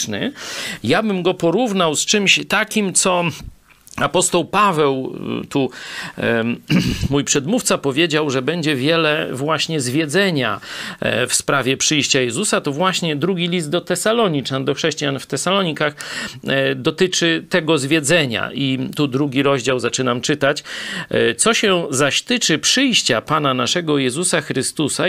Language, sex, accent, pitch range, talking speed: Polish, male, native, 135-195 Hz, 120 wpm